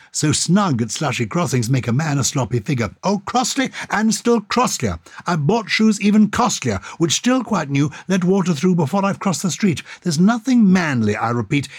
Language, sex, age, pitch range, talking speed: English, male, 60-79, 145-210 Hz, 195 wpm